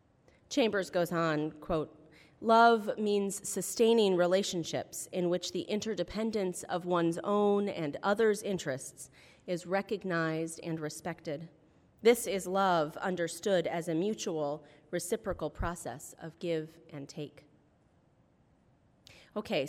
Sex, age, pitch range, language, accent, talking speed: female, 30-49, 170-215 Hz, English, American, 110 wpm